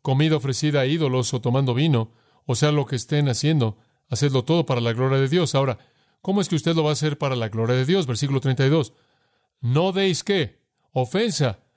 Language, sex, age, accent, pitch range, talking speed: Spanish, male, 40-59, Mexican, 130-165 Hz, 205 wpm